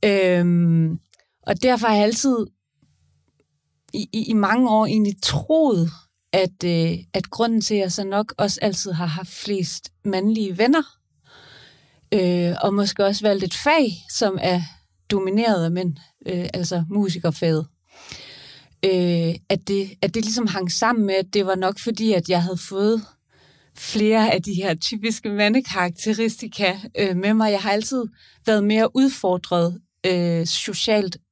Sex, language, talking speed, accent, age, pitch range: female, Danish, 140 wpm, native, 30-49, 170-215 Hz